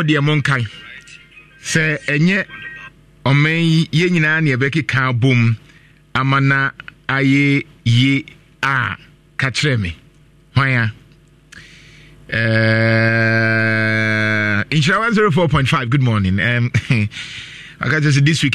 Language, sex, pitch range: English, male, 125-160 Hz